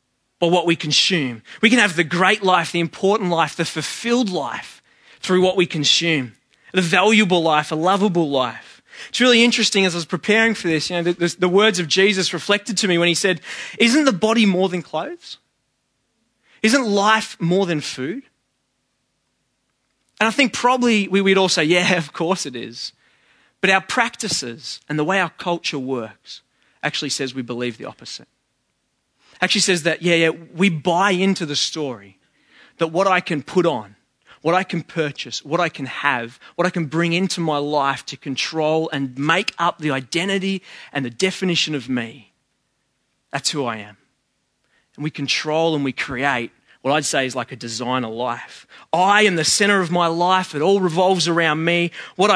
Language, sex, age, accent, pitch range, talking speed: English, male, 20-39, Australian, 145-195 Hz, 185 wpm